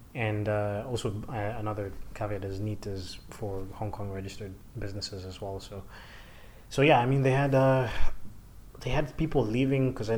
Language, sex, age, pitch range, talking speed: English, male, 20-39, 100-115 Hz, 175 wpm